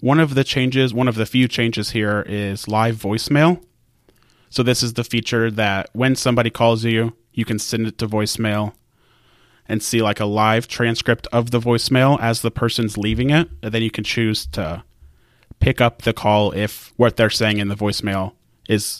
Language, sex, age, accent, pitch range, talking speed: English, male, 30-49, American, 110-125 Hz, 195 wpm